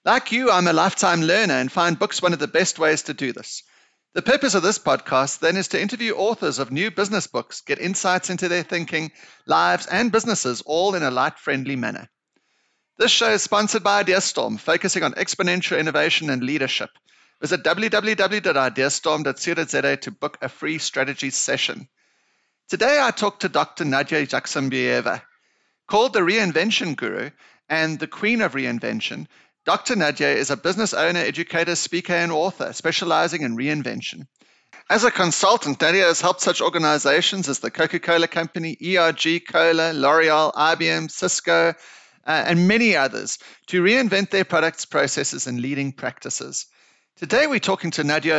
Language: English